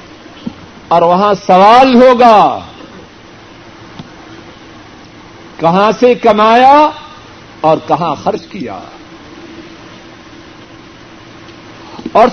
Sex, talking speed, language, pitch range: male, 60 wpm, Urdu, 200-280 Hz